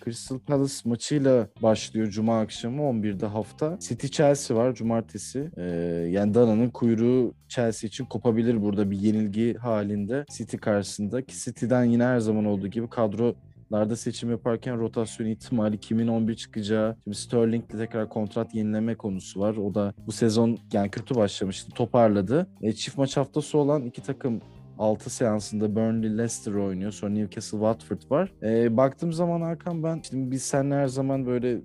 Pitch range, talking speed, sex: 105-130 Hz, 155 wpm, male